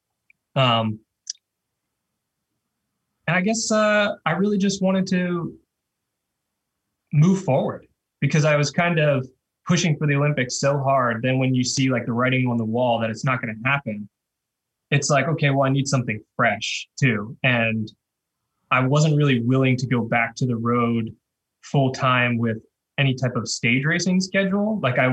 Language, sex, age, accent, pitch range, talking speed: English, male, 20-39, American, 110-135 Hz, 165 wpm